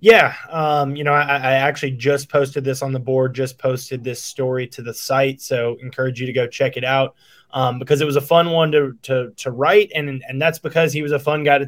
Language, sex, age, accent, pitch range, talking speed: English, male, 20-39, American, 130-155 Hz, 250 wpm